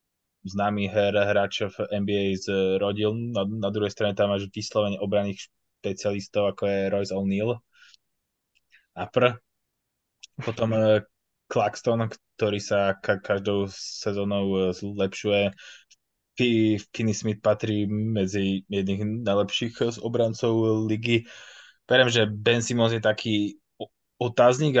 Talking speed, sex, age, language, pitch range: 115 wpm, male, 20-39, Slovak, 100-110 Hz